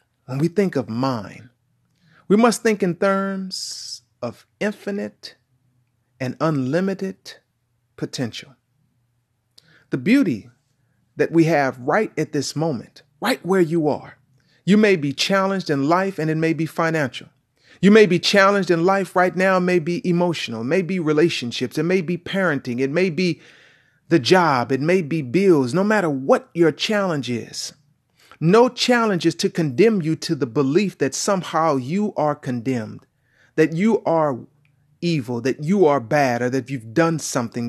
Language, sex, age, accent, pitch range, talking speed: English, male, 40-59, American, 130-180 Hz, 160 wpm